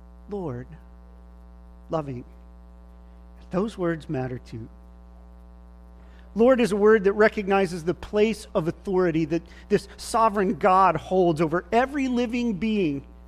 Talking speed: 115 wpm